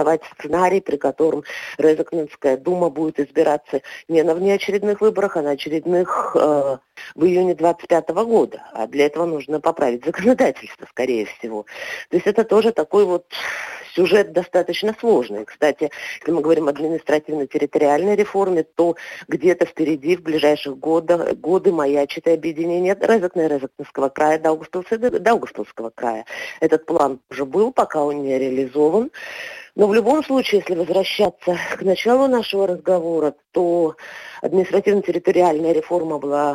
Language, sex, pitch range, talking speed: Russian, female, 145-195 Hz, 130 wpm